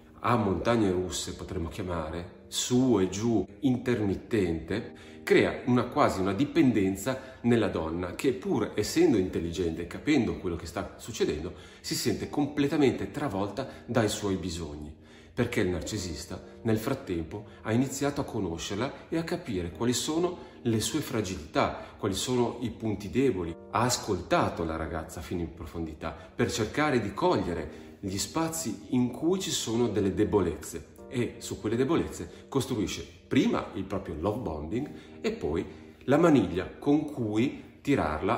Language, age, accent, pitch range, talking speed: Italian, 40-59, native, 90-120 Hz, 140 wpm